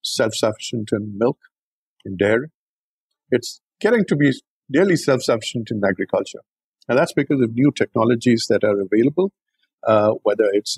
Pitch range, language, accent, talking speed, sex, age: 110-140 Hz, English, Indian, 140 wpm, male, 50-69